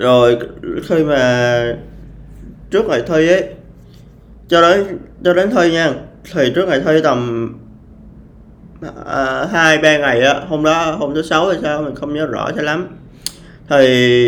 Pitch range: 130-170 Hz